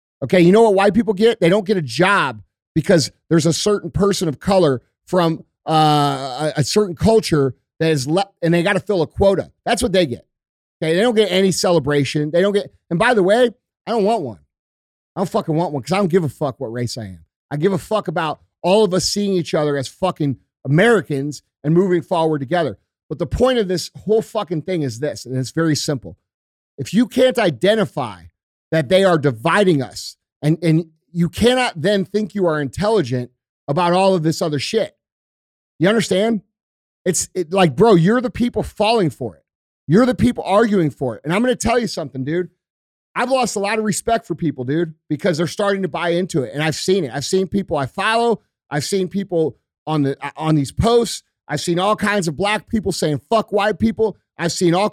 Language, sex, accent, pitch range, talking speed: English, male, American, 145-205 Hz, 215 wpm